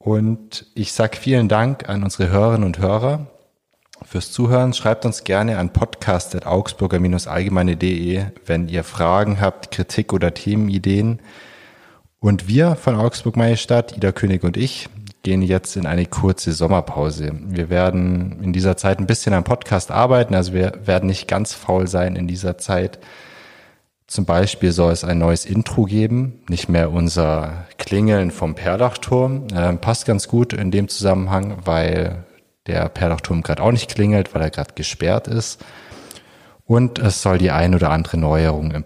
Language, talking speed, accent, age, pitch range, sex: German, 155 wpm, German, 30-49, 90-110 Hz, male